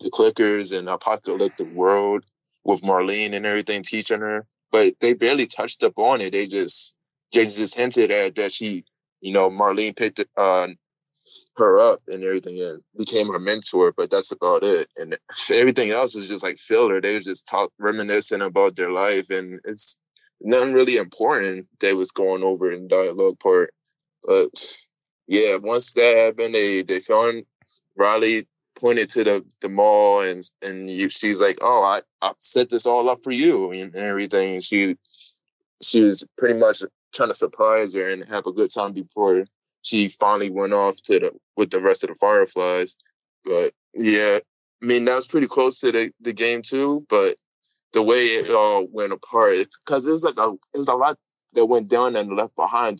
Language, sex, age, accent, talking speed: English, male, 20-39, American, 180 wpm